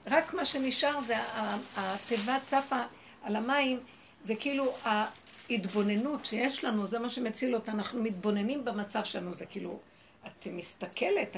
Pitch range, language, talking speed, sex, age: 195-255 Hz, Hebrew, 130 wpm, female, 60-79